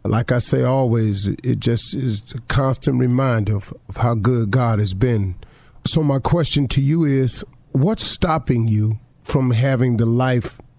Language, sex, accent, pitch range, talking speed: English, male, American, 115-145 Hz, 165 wpm